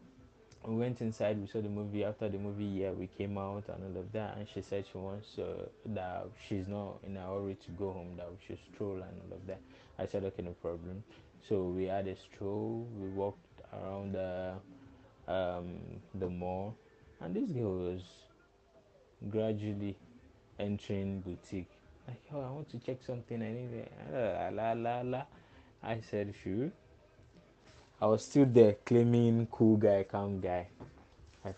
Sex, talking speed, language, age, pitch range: male, 165 wpm, English, 20-39, 100-140 Hz